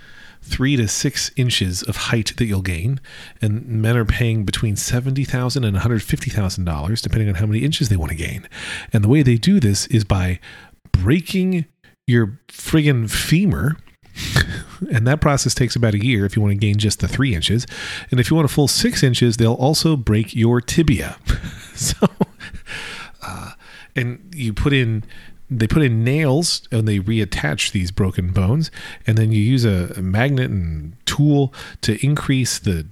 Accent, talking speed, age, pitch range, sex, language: American, 170 wpm, 40-59, 100-130 Hz, male, English